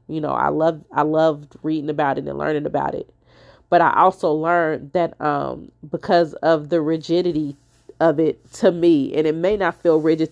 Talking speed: 190 wpm